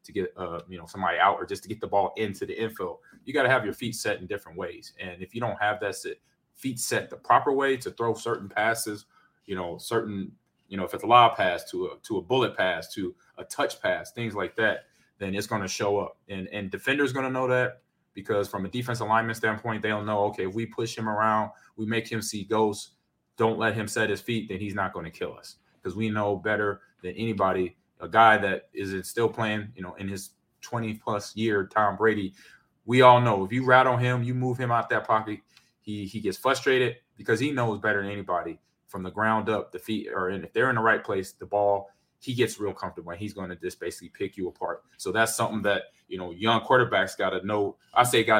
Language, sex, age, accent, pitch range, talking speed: English, male, 30-49, American, 100-115 Hz, 245 wpm